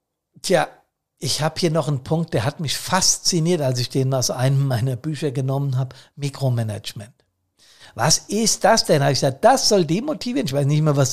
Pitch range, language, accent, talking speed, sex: 130-170 Hz, German, German, 195 wpm, male